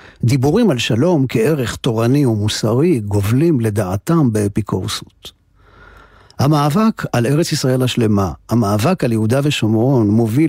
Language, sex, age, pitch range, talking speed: Hebrew, male, 50-69, 105-135 Hz, 110 wpm